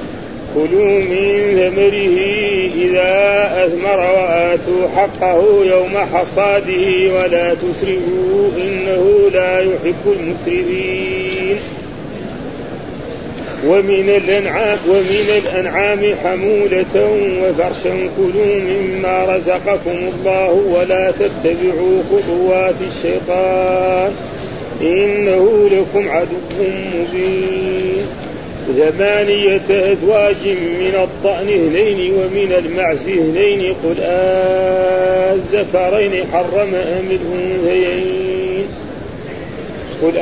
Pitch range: 185-200 Hz